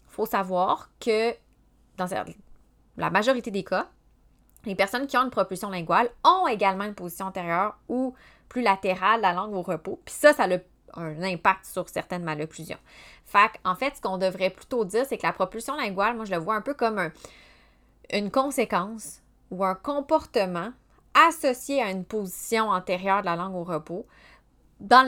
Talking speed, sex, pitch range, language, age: 180 wpm, female, 180-235 Hz, French, 20-39